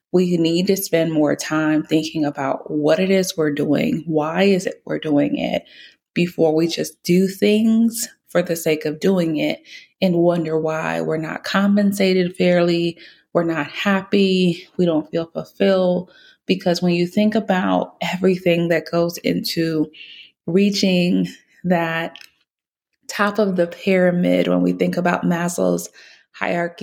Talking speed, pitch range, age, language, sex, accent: 145 wpm, 165-190 Hz, 20-39, English, female, American